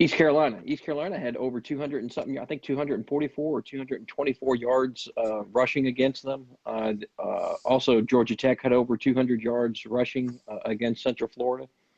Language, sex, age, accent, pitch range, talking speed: English, male, 40-59, American, 110-135 Hz, 165 wpm